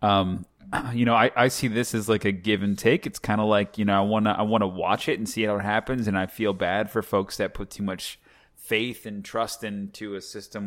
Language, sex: English, male